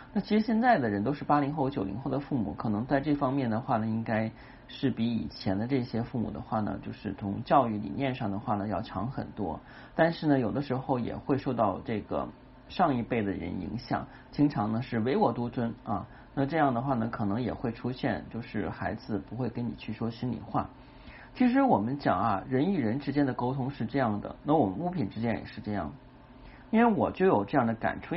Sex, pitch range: male, 115-145 Hz